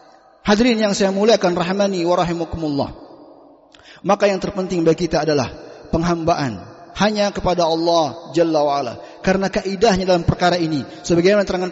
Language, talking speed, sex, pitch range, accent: Indonesian, 130 wpm, male, 180-230 Hz, native